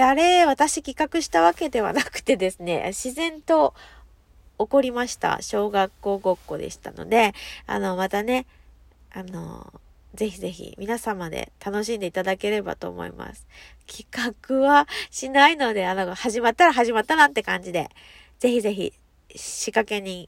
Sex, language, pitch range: female, Japanese, 190-275 Hz